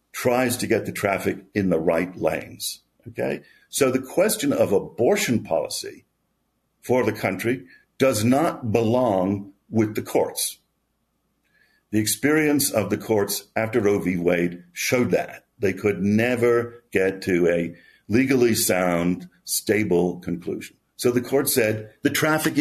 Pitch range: 95-130 Hz